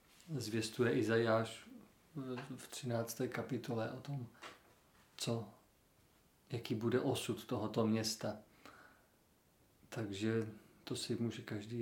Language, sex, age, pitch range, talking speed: Czech, male, 40-59, 110-130 Hz, 90 wpm